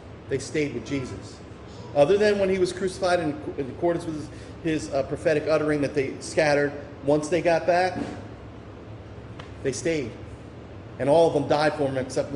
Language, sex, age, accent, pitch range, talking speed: English, male, 30-49, American, 105-155 Hz, 175 wpm